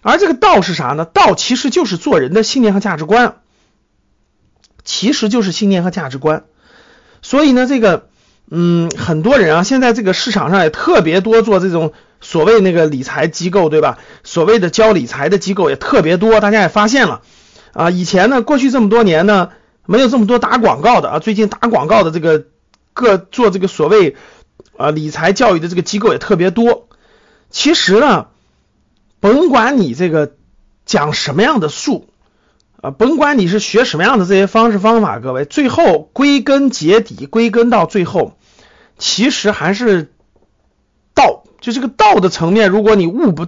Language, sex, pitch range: Chinese, male, 180-240 Hz